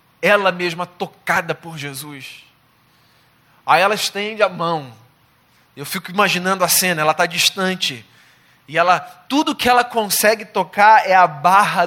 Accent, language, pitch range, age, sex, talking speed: Brazilian, Portuguese, 165-235 Hz, 20-39, male, 140 wpm